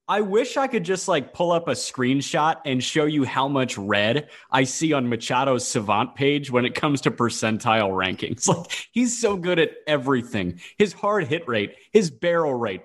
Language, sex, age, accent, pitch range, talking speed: English, male, 30-49, American, 120-175 Hz, 190 wpm